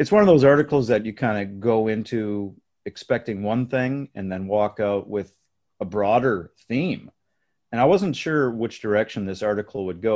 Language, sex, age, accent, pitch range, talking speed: English, male, 40-59, American, 95-115 Hz, 190 wpm